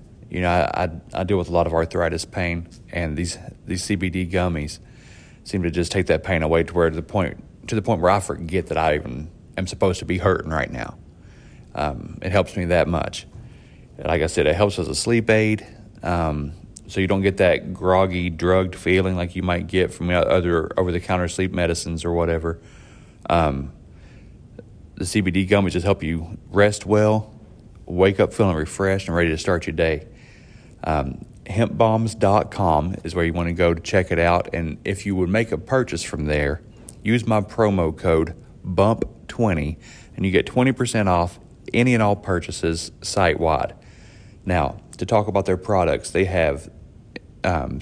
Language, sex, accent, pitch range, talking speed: English, male, American, 85-105 Hz, 185 wpm